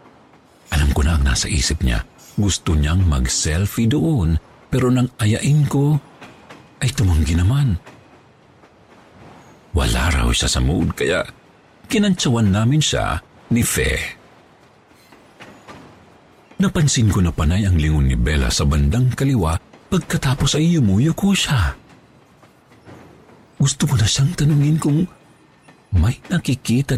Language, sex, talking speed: Filipino, male, 115 wpm